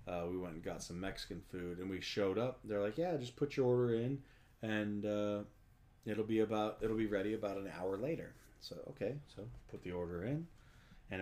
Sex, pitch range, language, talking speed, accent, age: male, 95-120 Hz, English, 215 wpm, American, 40-59